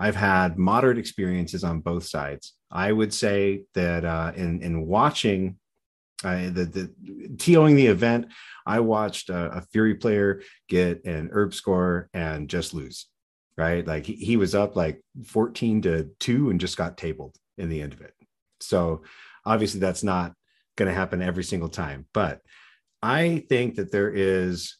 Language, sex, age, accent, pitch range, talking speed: English, male, 30-49, American, 85-110 Hz, 165 wpm